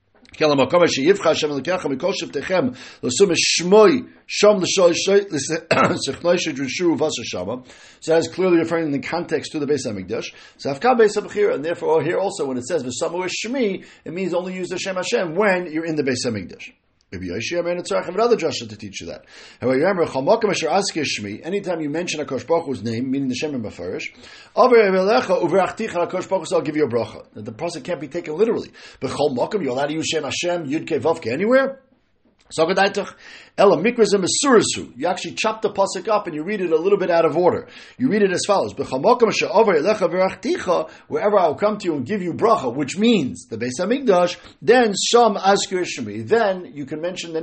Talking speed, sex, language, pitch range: 170 wpm, male, English, 155-215 Hz